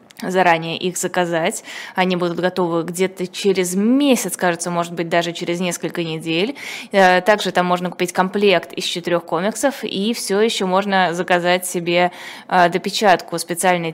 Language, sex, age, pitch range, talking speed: Russian, female, 20-39, 175-210 Hz, 140 wpm